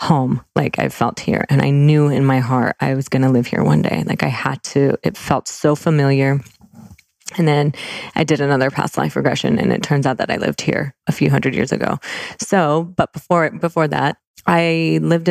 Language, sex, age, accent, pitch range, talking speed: English, female, 20-39, American, 140-165 Hz, 215 wpm